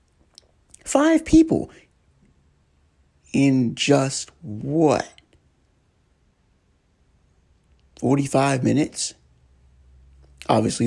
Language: English